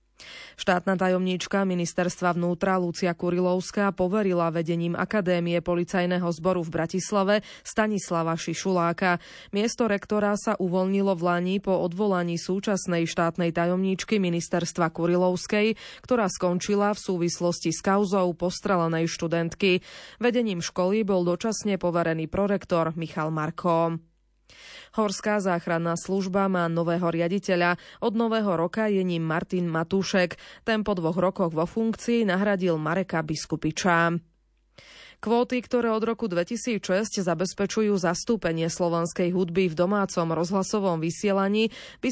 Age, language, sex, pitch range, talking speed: 20-39, Slovak, female, 170-205 Hz, 115 wpm